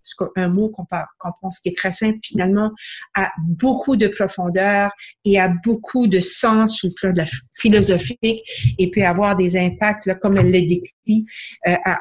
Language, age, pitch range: French, 50-69, 190-230 Hz